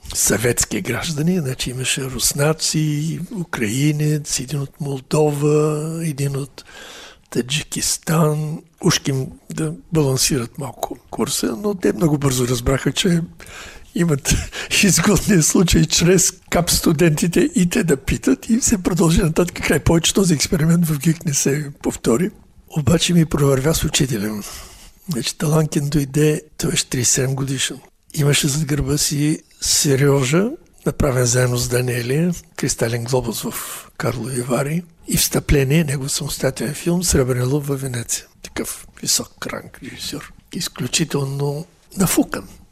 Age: 60-79